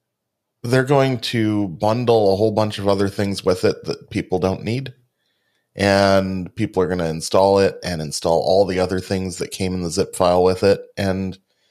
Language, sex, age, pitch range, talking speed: English, male, 30-49, 95-115 Hz, 195 wpm